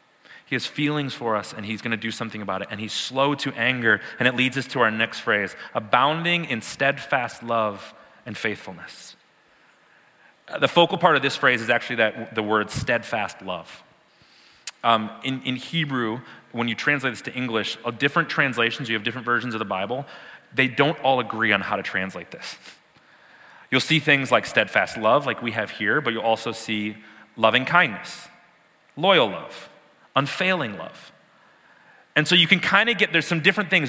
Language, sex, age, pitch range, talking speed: English, male, 30-49, 115-165 Hz, 185 wpm